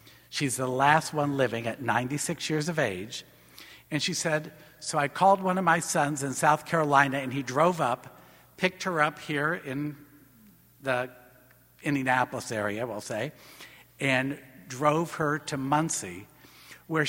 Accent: American